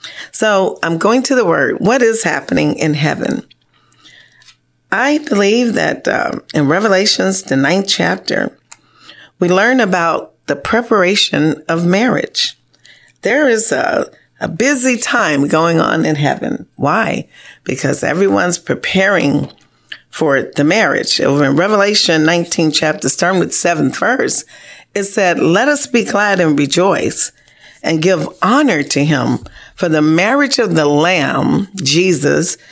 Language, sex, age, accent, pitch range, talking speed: English, female, 40-59, American, 155-225 Hz, 130 wpm